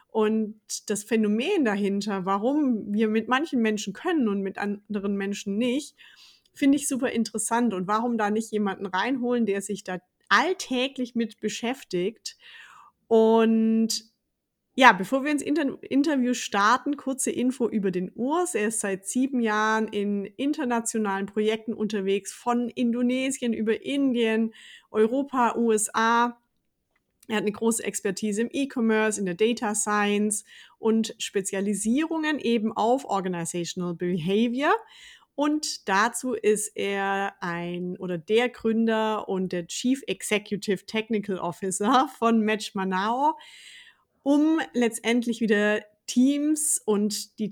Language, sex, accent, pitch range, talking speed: German, female, German, 200-245 Hz, 120 wpm